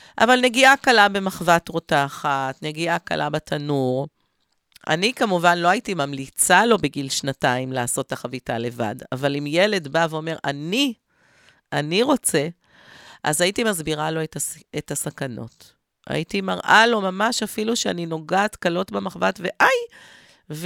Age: 40-59